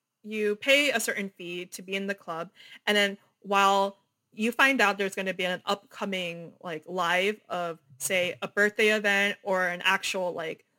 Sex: female